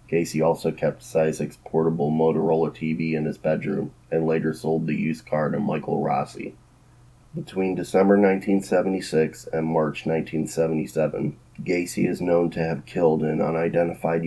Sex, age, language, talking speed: male, 30-49, English, 140 wpm